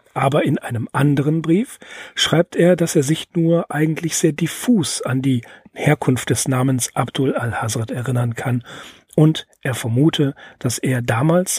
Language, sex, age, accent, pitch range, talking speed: German, male, 40-59, German, 125-150 Hz, 155 wpm